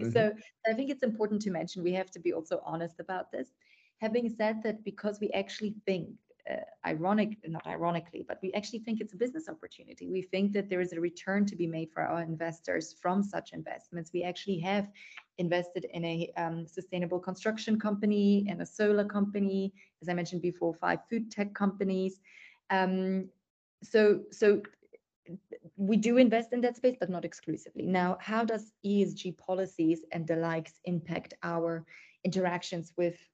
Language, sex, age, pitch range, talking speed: English, female, 30-49, 170-205 Hz, 175 wpm